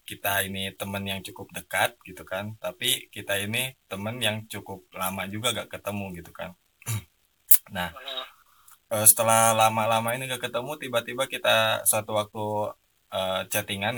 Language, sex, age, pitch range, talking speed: Indonesian, male, 20-39, 95-110 Hz, 135 wpm